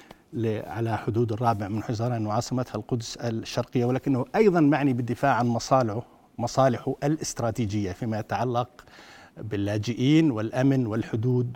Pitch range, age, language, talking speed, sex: 115-135 Hz, 60-79, Arabic, 110 wpm, male